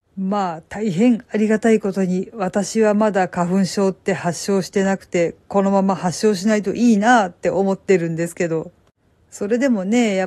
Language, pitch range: Japanese, 185-240 Hz